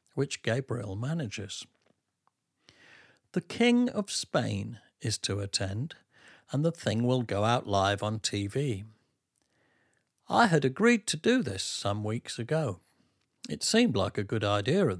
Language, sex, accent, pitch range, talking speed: English, male, British, 105-140 Hz, 140 wpm